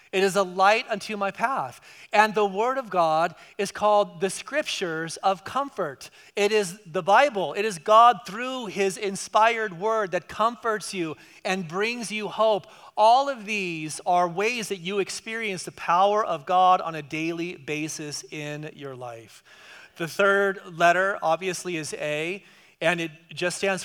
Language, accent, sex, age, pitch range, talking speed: English, American, male, 30-49, 165-210 Hz, 165 wpm